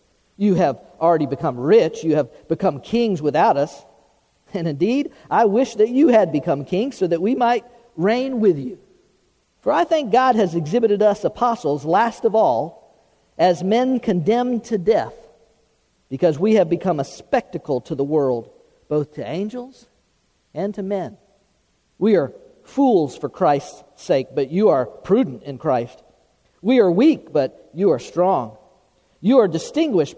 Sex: male